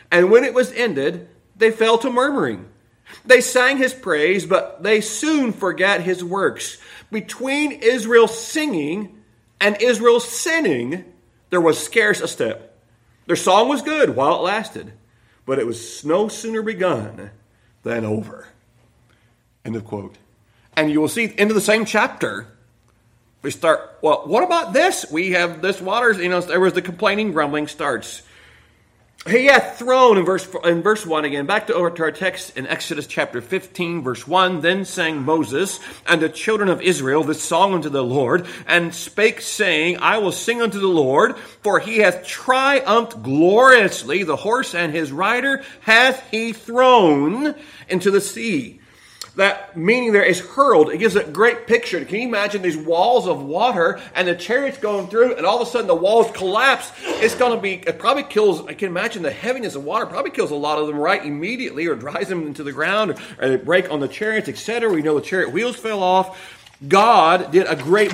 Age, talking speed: 40-59, 180 wpm